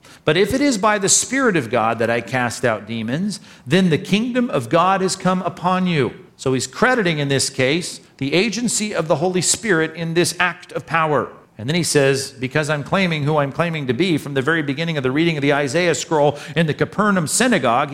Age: 50-69